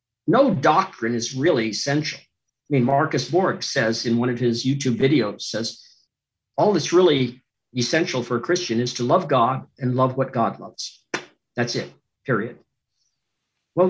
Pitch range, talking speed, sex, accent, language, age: 120-165 Hz, 160 wpm, male, American, English, 50-69